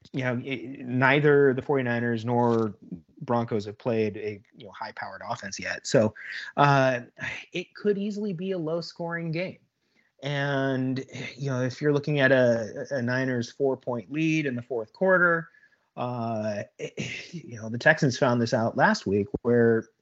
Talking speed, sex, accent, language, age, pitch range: 160 wpm, male, American, English, 30-49, 120-155 Hz